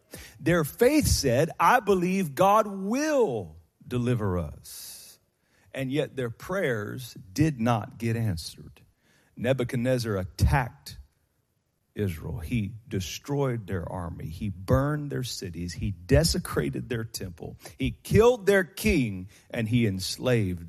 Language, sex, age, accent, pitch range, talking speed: English, male, 40-59, American, 90-130 Hz, 115 wpm